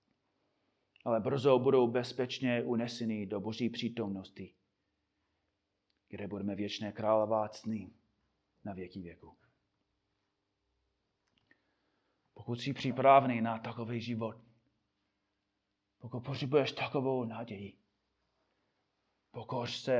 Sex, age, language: male, 30-49, Czech